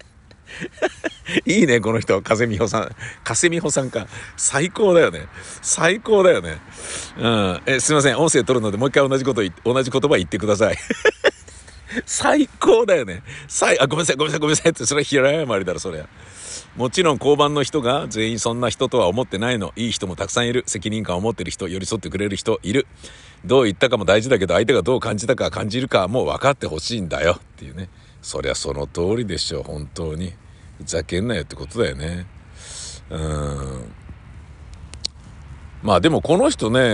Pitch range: 80-125 Hz